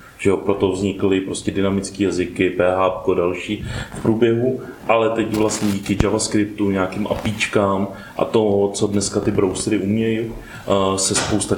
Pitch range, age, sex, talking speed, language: 95-105 Hz, 30-49, male, 135 wpm, Czech